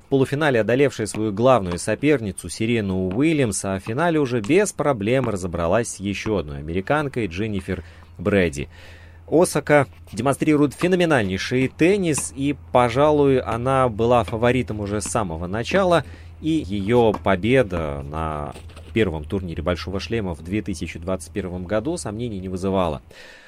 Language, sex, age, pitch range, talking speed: Russian, male, 30-49, 90-130 Hz, 120 wpm